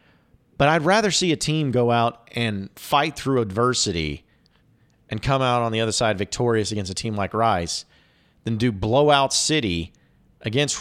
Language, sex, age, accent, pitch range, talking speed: English, male, 40-59, American, 100-135 Hz, 165 wpm